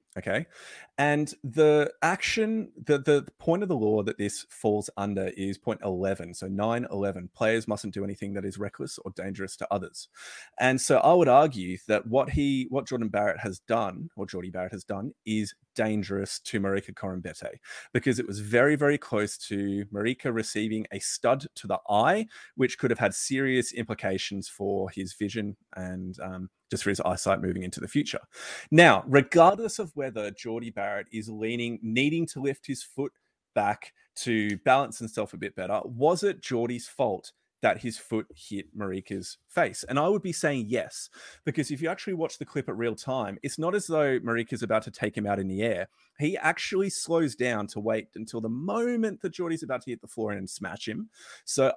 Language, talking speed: English, 190 wpm